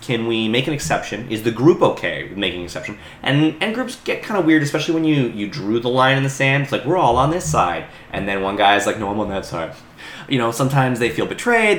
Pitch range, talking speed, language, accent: 105-160 Hz, 270 wpm, English, American